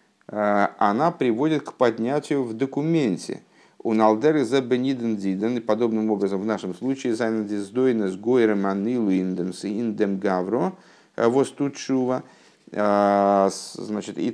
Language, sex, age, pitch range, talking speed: Russian, male, 50-69, 100-125 Hz, 80 wpm